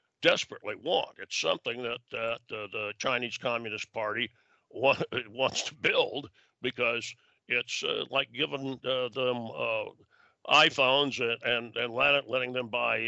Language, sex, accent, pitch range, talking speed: English, male, American, 115-145 Hz, 135 wpm